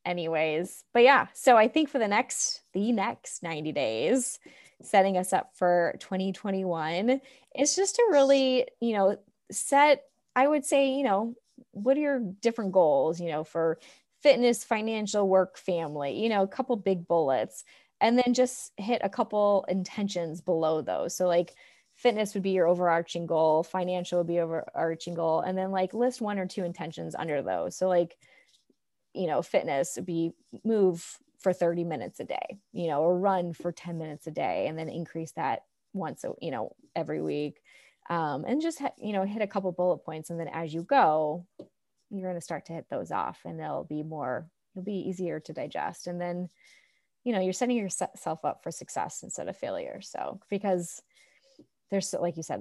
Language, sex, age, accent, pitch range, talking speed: English, female, 20-39, American, 170-225 Hz, 185 wpm